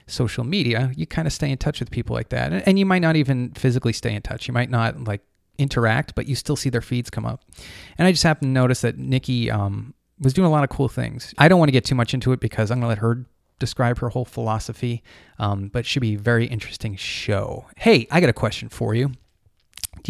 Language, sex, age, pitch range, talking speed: English, male, 30-49, 110-140 Hz, 250 wpm